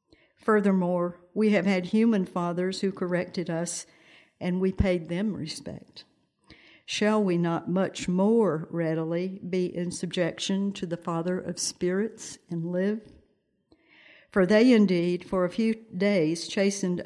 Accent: American